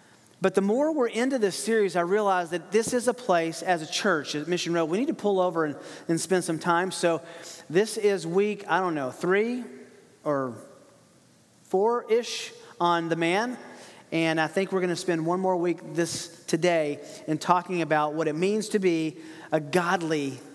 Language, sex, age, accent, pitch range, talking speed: English, male, 40-59, American, 170-235 Hz, 185 wpm